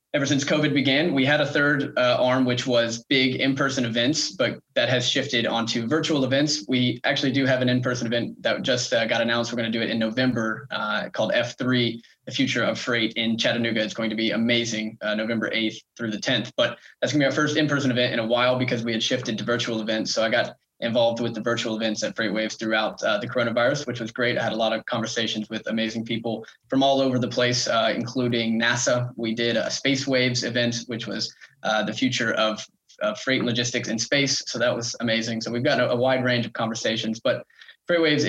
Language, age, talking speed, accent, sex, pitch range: English, 20-39, 235 wpm, American, male, 115-130 Hz